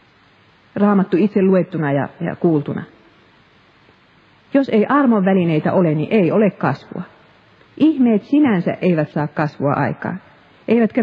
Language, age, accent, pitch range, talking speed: Finnish, 40-59, native, 160-215 Hz, 120 wpm